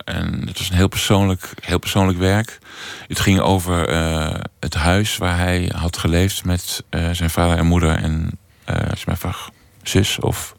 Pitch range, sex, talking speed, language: 80-100 Hz, male, 180 wpm, Dutch